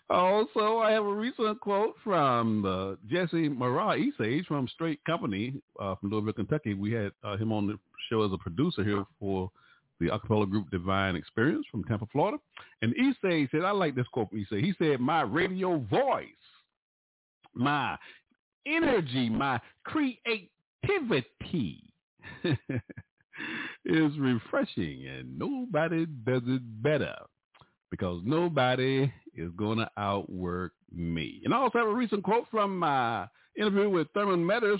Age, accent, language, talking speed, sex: 50-69, American, English, 145 wpm, male